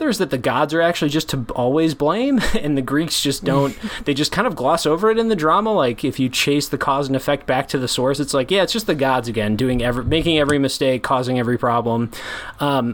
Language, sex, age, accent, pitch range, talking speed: English, male, 20-39, American, 125-155 Hz, 250 wpm